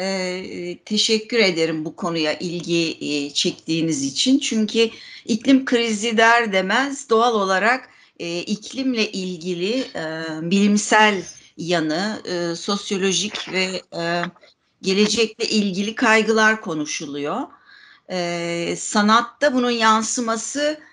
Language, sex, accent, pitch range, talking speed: Turkish, female, native, 175-225 Hz, 95 wpm